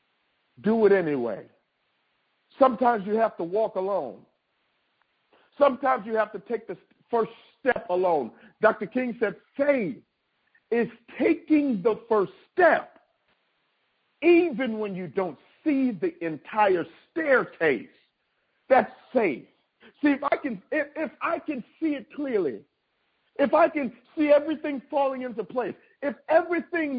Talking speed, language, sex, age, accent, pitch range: 130 wpm, English, male, 50-69, American, 195-275 Hz